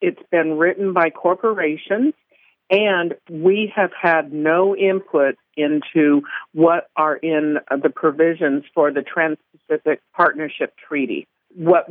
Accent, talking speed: American, 115 wpm